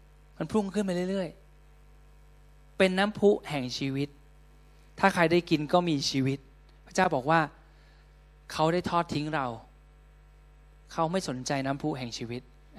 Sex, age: male, 20-39